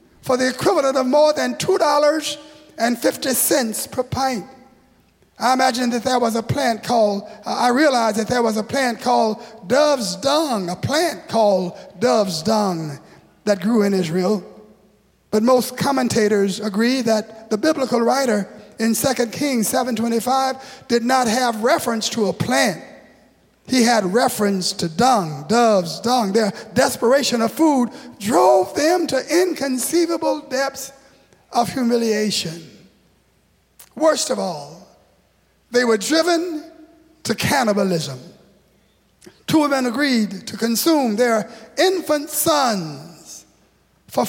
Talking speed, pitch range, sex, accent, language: 120 wpm, 215-275 Hz, male, American, English